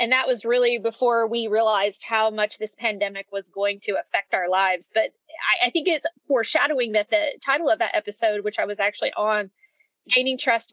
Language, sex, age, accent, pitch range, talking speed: English, female, 20-39, American, 215-275 Hz, 200 wpm